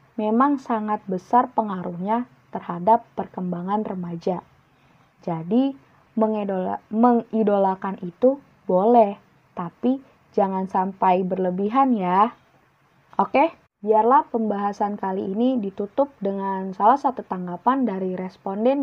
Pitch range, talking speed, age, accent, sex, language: 190-235 Hz, 90 wpm, 20-39, native, female, Indonesian